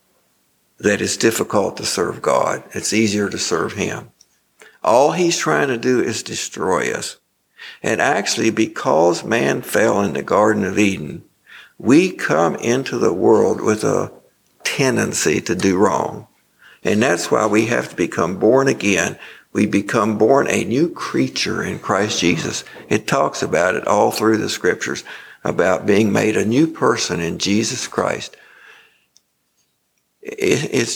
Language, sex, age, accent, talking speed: English, male, 60-79, American, 145 wpm